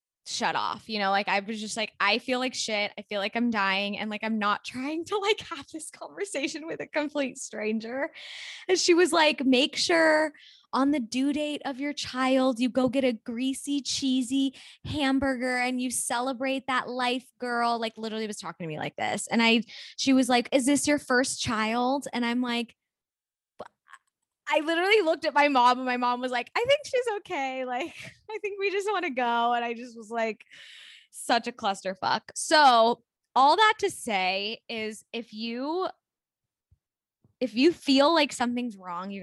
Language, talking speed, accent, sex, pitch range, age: English, 190 wpm, American, female, 215-275 Hz, 10-29